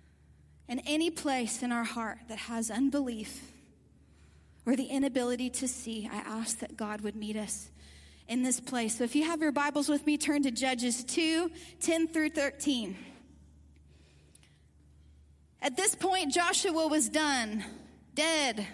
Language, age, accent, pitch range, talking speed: English, 30-49, American, 225-295 Hz, 145 wpm